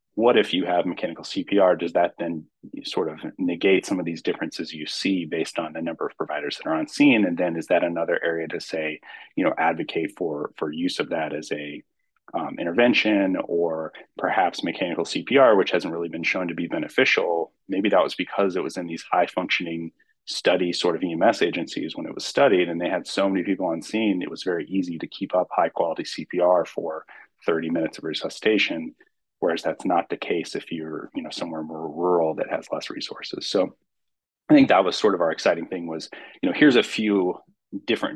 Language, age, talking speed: English, 30-49, 210 wpm